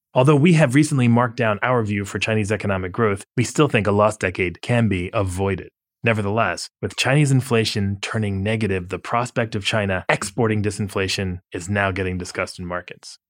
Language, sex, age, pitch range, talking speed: English, male, 20-39, 100-130 Hz, 175 wpm